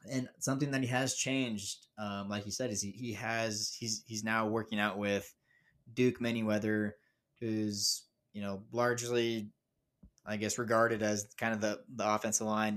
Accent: American